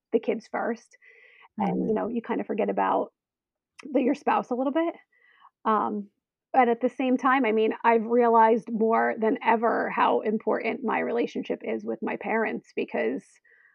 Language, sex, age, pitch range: English, female, 30-49, 215-250 Hz